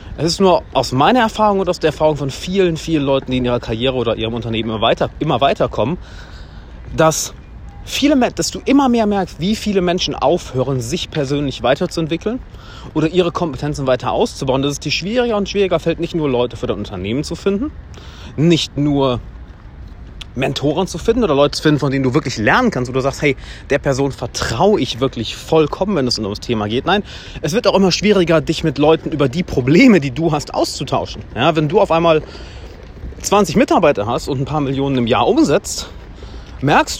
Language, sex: German, male